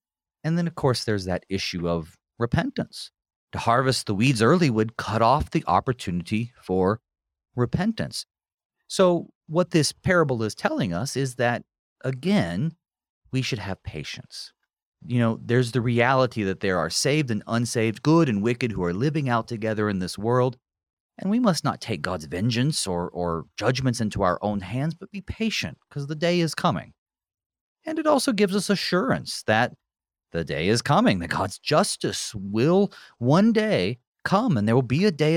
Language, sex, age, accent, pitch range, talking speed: English, male, 30-49, American, 100-150 Hz, 175 wpm